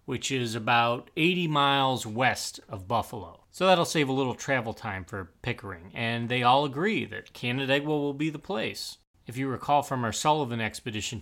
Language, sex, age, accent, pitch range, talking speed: English, male, 30-49, American, 110-150 Hz, 180 wpm